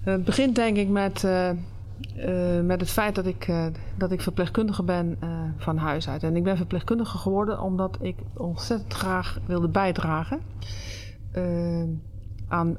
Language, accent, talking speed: Dutch, Dutch, 160 wpm